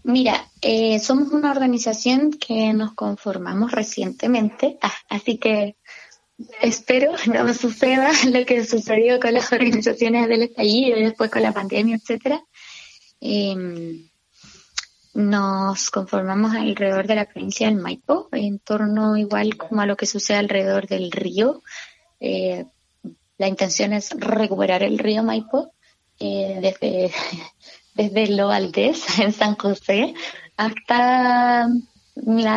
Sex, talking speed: female, 125 wpm